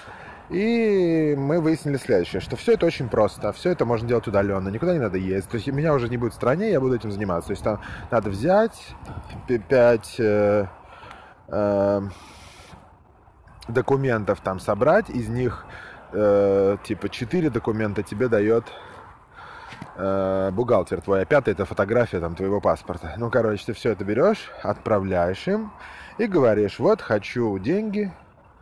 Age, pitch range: 20-39, 95-130 Hz